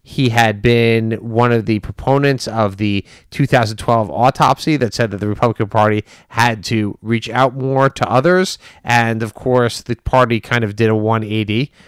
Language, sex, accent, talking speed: English, male, American, 170 wpm